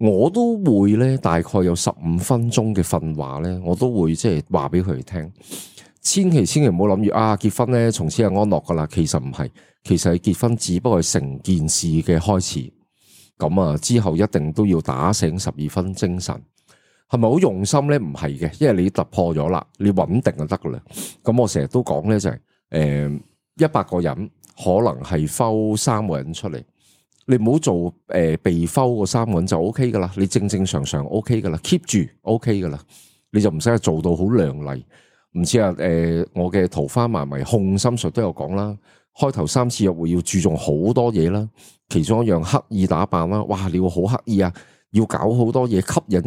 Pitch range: 85-115 Hz